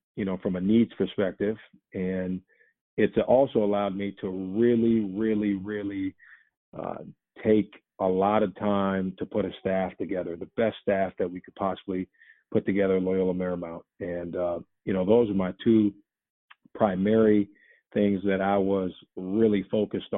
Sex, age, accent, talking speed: male, 40-59, American, 160 wpm